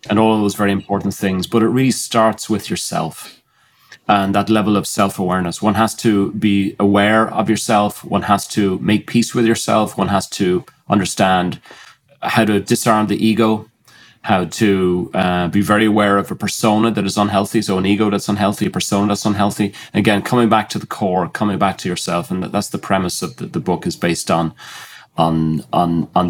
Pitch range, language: 95-110 Hz, English